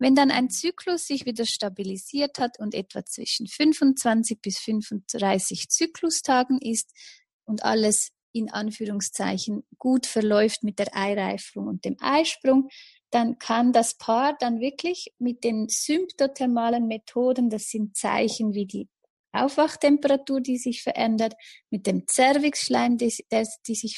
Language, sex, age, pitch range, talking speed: German, female, 30-49, 220-265 Hz, 130 wpm